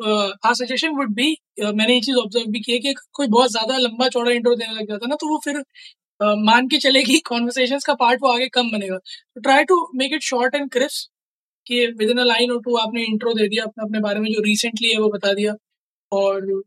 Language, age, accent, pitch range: Hindi, 20-39, native, 225-275 Hz